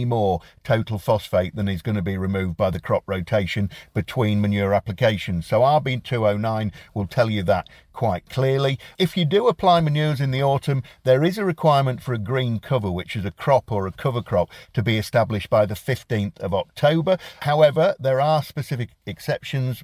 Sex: male